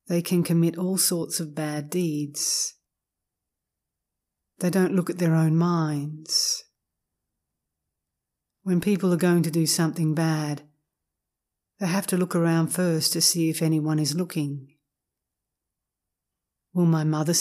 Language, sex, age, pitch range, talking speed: English, female, 40-59, 150-180 Hz, 130 wpm